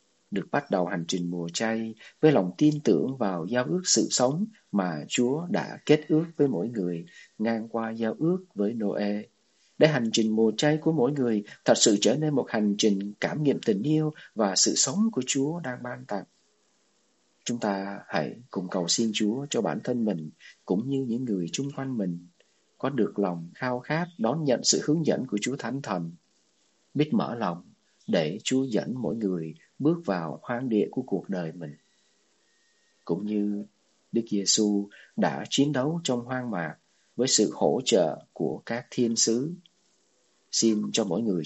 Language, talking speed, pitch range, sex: Vietnamese, 185 wpm, 105-150 Hz, male